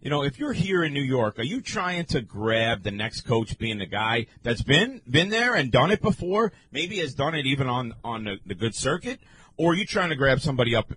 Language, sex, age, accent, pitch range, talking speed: English, male, 40-59, American, 110-155 Hz, 250 wpm